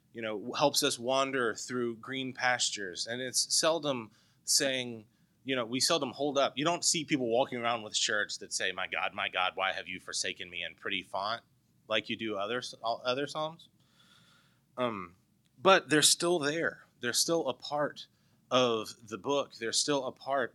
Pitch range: 115-150 Hz